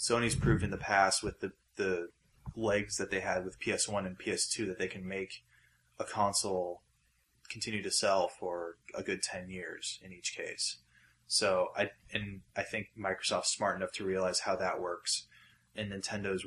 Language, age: English, 20-39